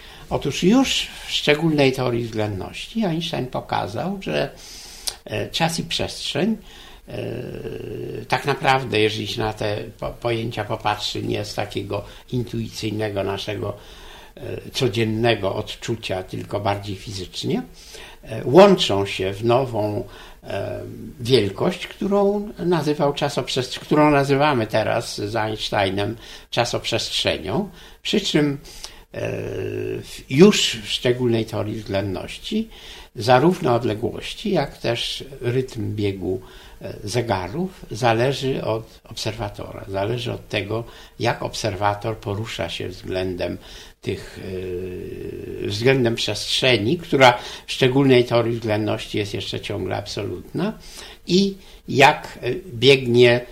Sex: male